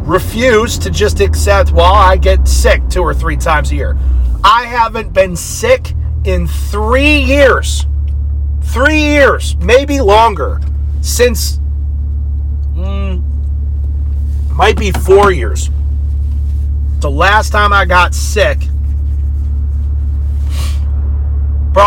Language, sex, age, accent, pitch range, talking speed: English, male, 40-59, American, 70-80 Hz, 105 wpm